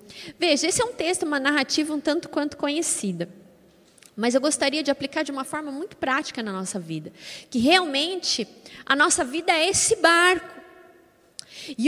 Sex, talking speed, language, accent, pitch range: female, 165 wpm, Portuguese, Brazilian, 285-370 Hz